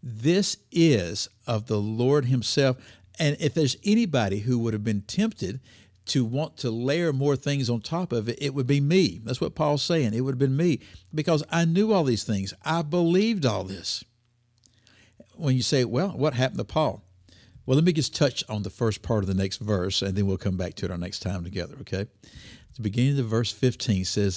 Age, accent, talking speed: 60-79, American, 215 wpm